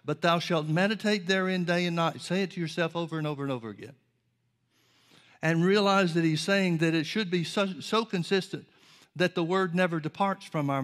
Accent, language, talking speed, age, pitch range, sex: American, English, 205 wpm, 60-79, 145-175 Hz, male